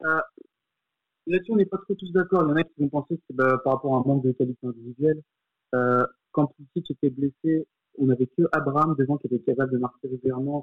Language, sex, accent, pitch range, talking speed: French, male, French, 130-145 Hz, 235 wpm